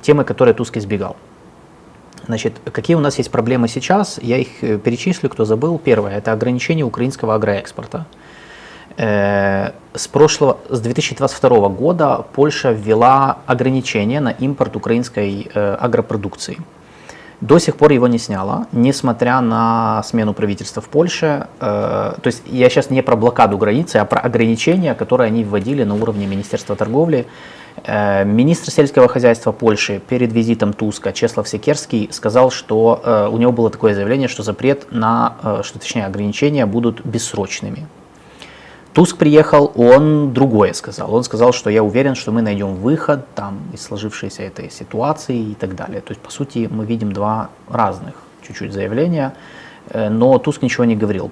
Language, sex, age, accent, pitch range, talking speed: Russian, male, 20-39, native, 105-135 Hz, 145 wpm